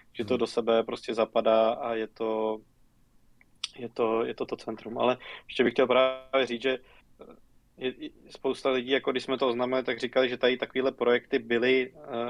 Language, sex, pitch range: Czech, male, 120-130 Hz